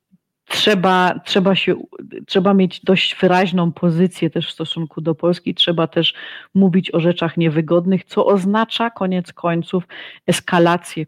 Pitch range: 165-185 Hz